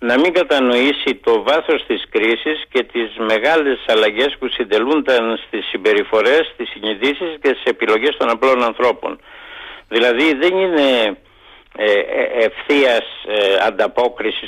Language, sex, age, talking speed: Greek, male, 60-79, 115 wpm